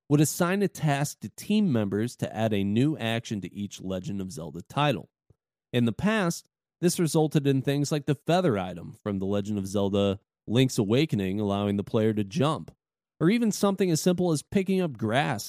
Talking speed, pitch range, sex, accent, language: 195 wpm, 105-155 Hz, male, American, English